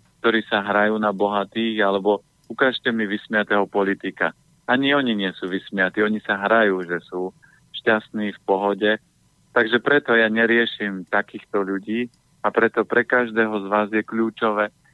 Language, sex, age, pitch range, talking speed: Slovak, male, 50-69, 105-115 Hz, 150 wpm